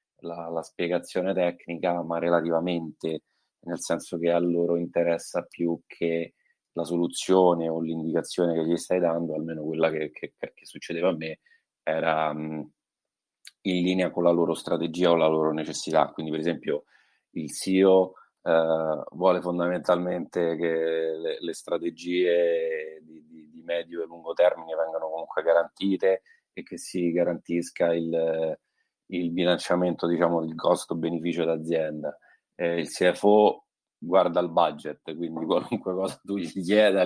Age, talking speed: 30-49, 140 wpm